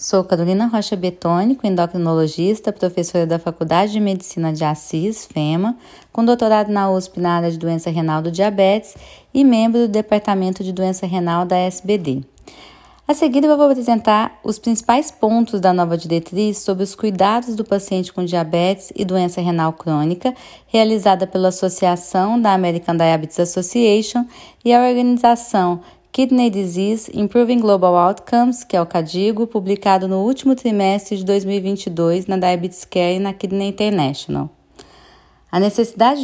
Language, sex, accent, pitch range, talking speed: Portuguese, female, Brazilian, 175-225 Hz, 145 wpm